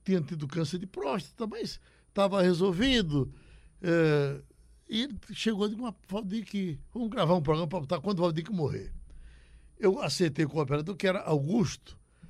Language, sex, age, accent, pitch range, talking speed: Portuguese, male, 60-79, Brazilian, 145-195 Hz, 175 wpm